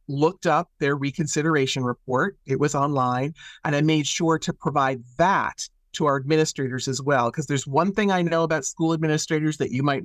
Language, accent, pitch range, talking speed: English, American, 140-175 Hz, 190 wpm